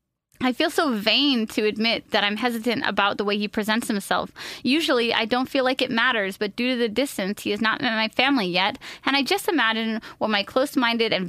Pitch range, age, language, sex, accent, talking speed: 215-270 Hz, 20-39, English, female, American, 225 wpm